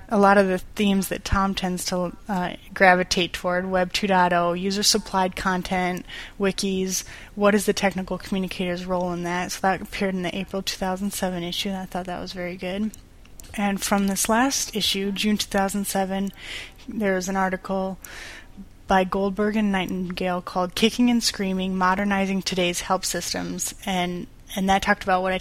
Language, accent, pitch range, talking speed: English, American, 180-200 Hz, 165 wpm